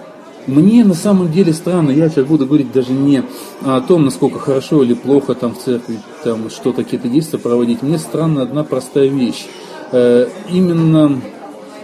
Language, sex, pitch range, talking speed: Russian, male, 125-160 Hz, 155 wpm